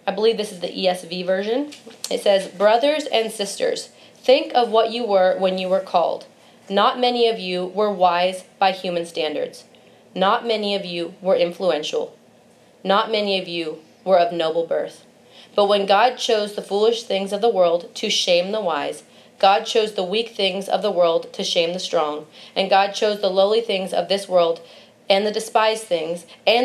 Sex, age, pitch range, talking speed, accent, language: female, 30-49, 185-235 Hz, 190 wpm, American, English